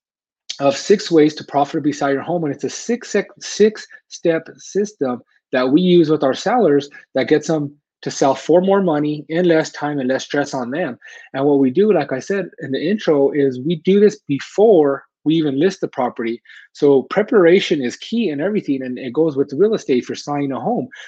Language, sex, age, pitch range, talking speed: English, male, 30-49, 135-170 Hz, 210 wpm